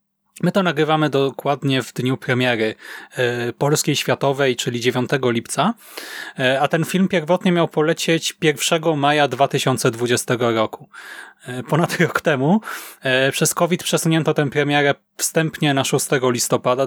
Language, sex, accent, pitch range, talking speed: Polish, male, native, 125-165 Hz, 120 wpm